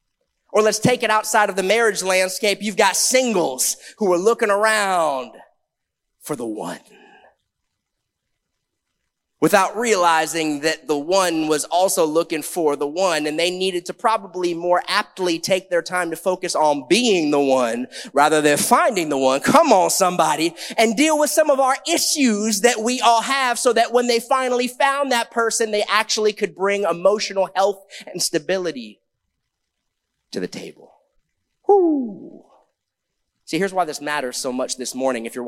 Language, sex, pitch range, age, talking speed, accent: English, male, 170-245 Hz, 30-49, 160 wpm, American